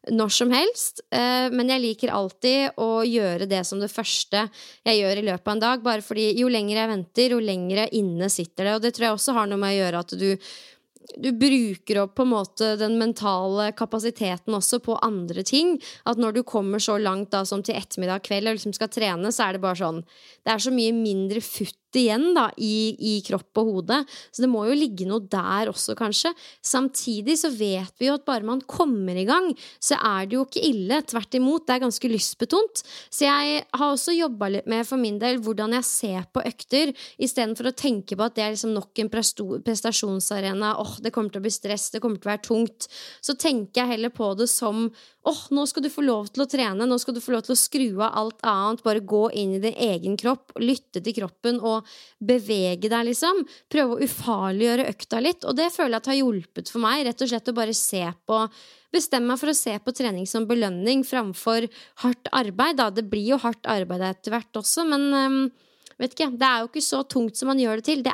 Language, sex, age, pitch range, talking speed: English, female, 20-39, 210-260 Hz, 220 wpm